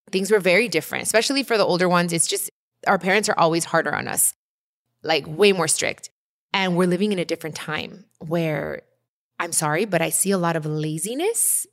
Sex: female